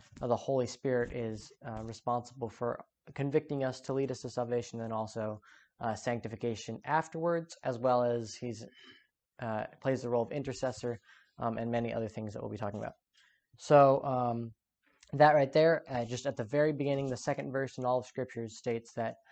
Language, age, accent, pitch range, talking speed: English, 10-29, American, 115-135 Hz, 185 wpm